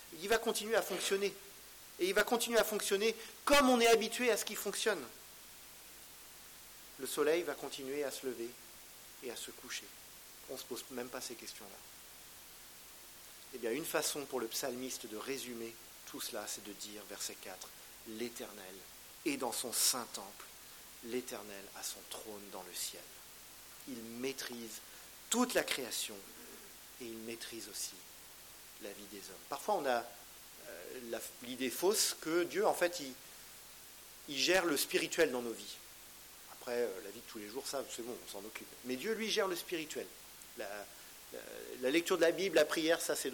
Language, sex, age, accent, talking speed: French, male, 40-59, French, 180 wpm